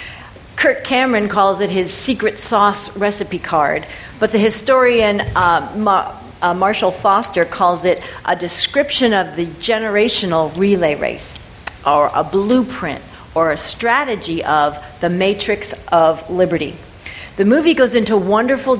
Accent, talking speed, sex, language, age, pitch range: American, 130 wpm, female, English, 50-69, 170-230 Hz